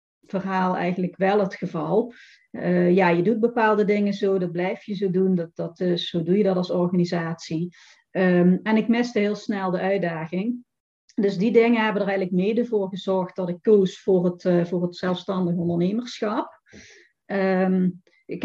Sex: female